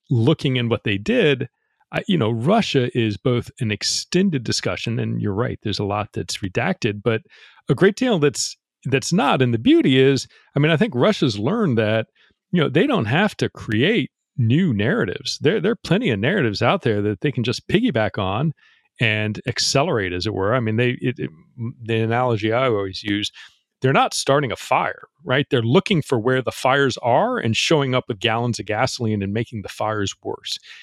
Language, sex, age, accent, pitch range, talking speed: English, male, 40-59, American, 110-160 Hz, 195 wpm